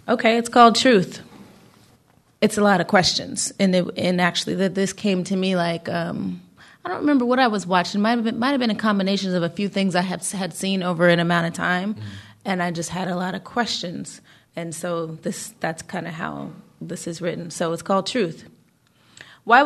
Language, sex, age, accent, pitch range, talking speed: English, female, 20-39, American, 175-210 Hz, 215 wpm